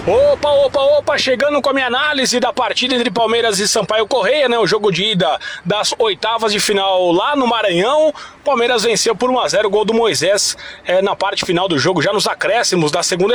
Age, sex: 20-39, male